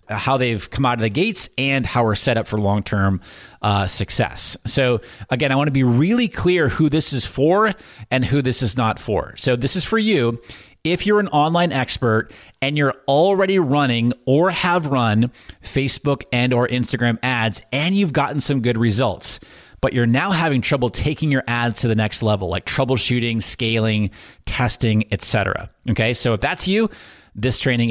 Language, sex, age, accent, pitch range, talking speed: English, male, 30-49, American, 105-135 Hz, 185 wpm